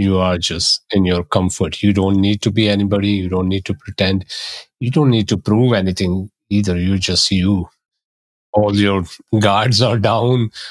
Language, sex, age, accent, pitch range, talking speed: English, male, 30-49, Indian, 95-110 Hz, 180 wpm